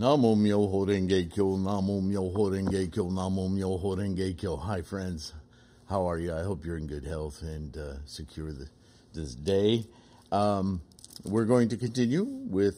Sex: male